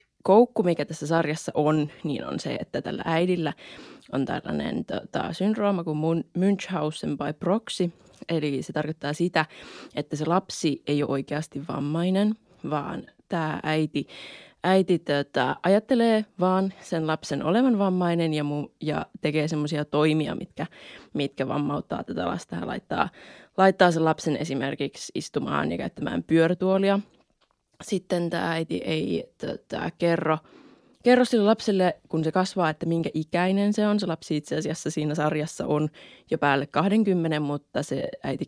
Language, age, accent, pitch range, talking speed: Finnish, 20-39, native, 155-190 Hz, 140 wpm